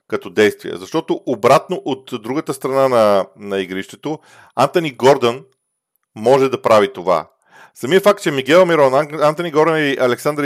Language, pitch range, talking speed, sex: Bulgarian, 105-140 Hz, 145 wpm, male